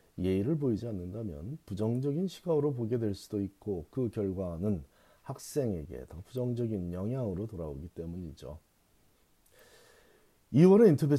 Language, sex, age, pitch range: Korean, male, 40-59, 95-140 Hz